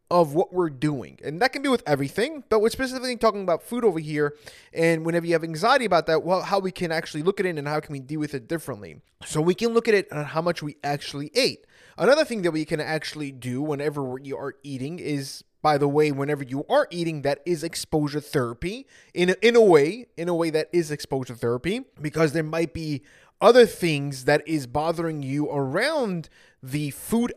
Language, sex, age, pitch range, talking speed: English, male, 20-39, 145-195 Hz, 220 wpm